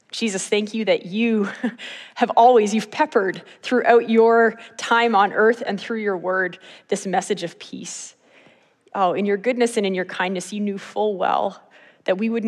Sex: female